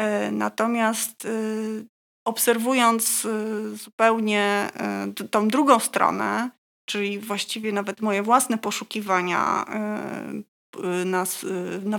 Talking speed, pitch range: 70 wpm, 200-235 Hz